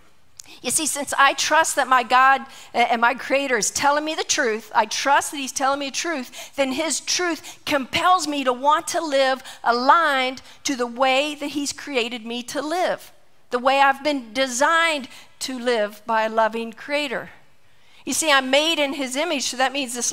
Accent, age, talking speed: American, 50-69, 195 wpm